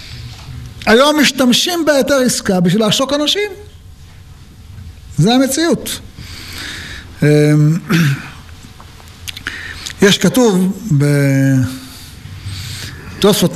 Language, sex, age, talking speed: Hebrew, male, 60-79, 55 wpm